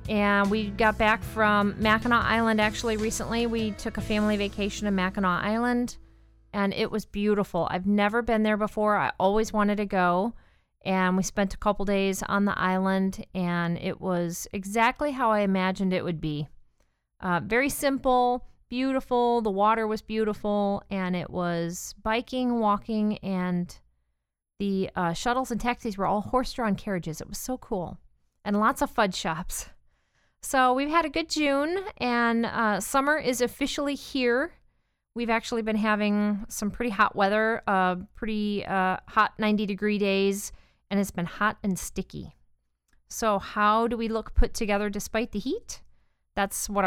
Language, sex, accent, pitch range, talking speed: English, female, American, 190-230 Hz, 160 wpm